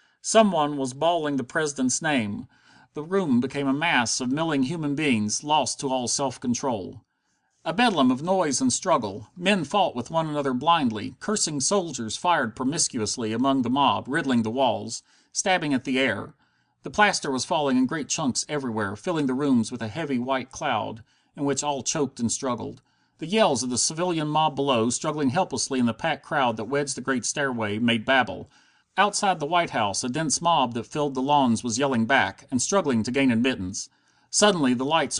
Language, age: English, 40-59